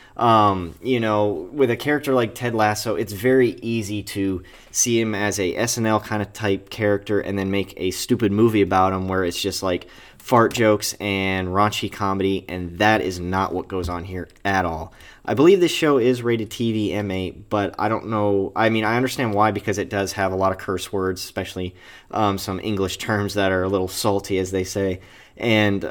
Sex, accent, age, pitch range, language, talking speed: male, American, 30-49, 95-110 Hz, English, 205 wpm